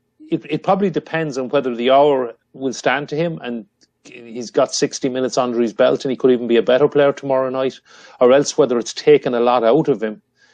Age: 30-49